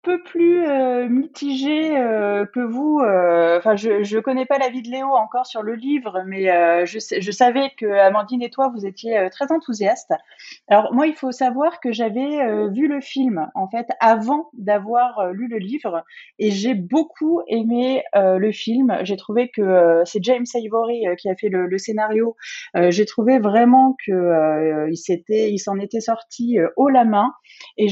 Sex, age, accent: female, 30-49, French